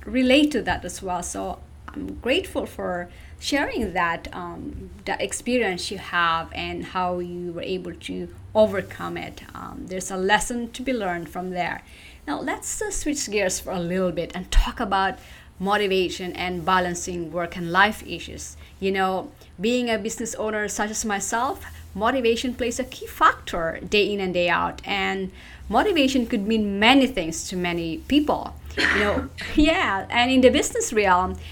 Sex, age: female, 30-49